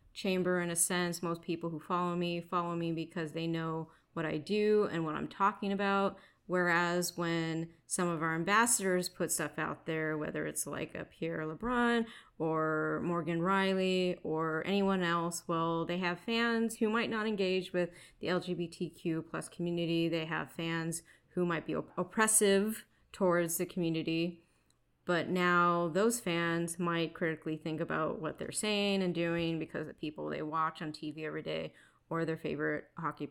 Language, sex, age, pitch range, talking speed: English, female, 30-49, 165-190 Hz, 170 wpm